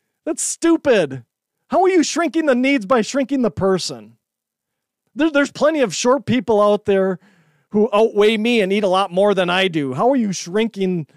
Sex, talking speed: male, 185 wpm